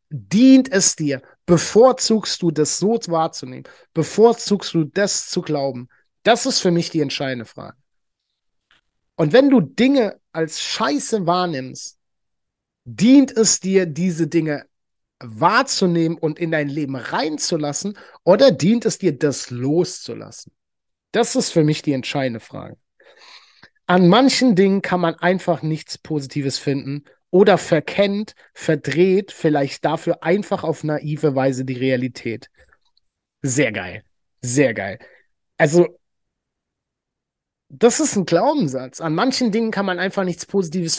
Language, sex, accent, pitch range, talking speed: German, male, German, 150-225 Hz, 130 wpm